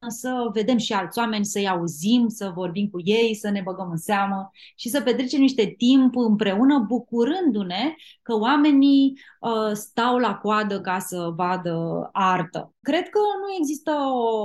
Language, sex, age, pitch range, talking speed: Romanian, female, 20-39, 200-265 Hz, 160 wpm